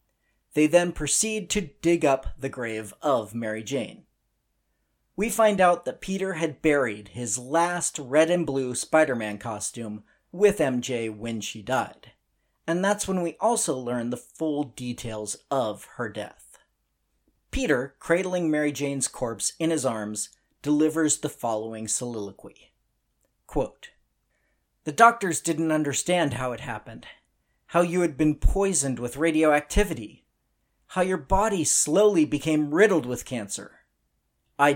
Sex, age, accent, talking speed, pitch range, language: male, 40-59, American, 135 wpm, 110-160 Hz, English